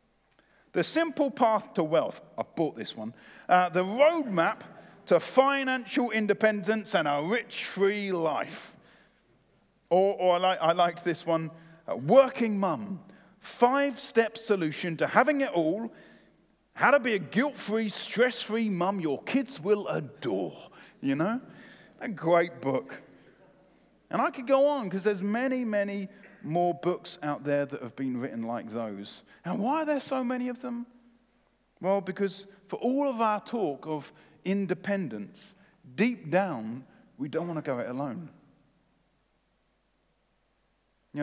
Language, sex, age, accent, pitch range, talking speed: English, male, 40-59, British, 160-230 Hz, 145 wpm